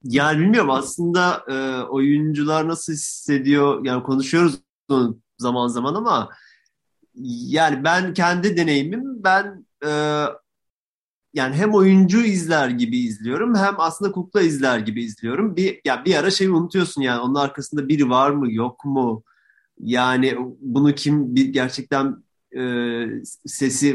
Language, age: Turkish, 30-49